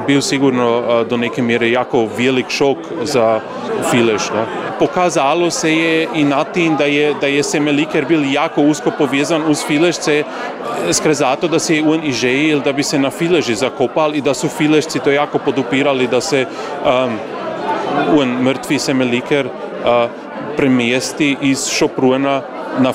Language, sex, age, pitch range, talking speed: Croatian, male, 30-49, 125-150 Hz, 150 wpm